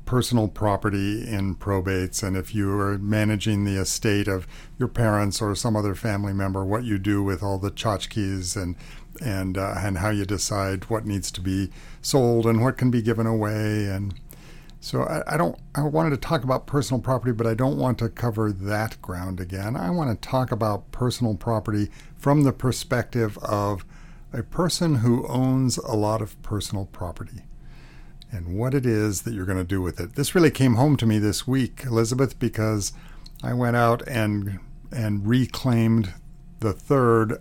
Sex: male